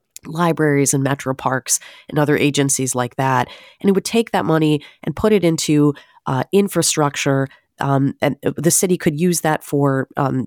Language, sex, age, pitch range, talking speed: English, female, 30-49, 130-170 Hz, 170 wpm